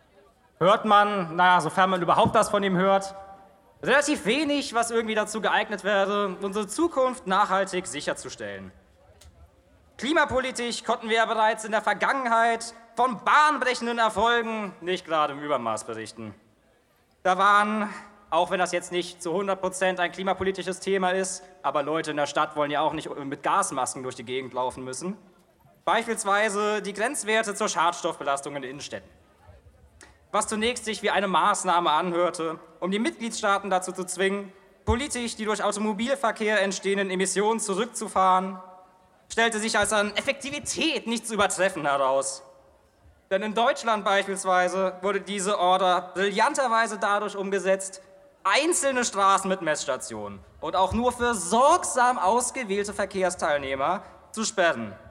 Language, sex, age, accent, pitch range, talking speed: German, male, 20-39, German, 175-220 Hz, 140 wpm